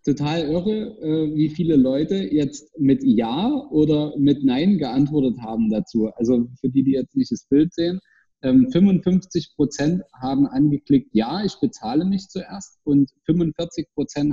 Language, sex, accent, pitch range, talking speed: German, male, German, 135-185 Hz, 145 wpm